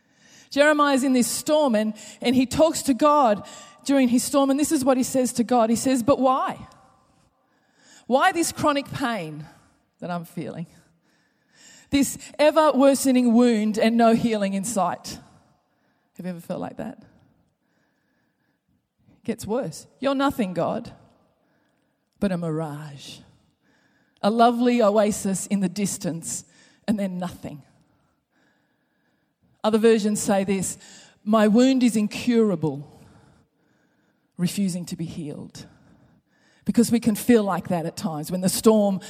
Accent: Australian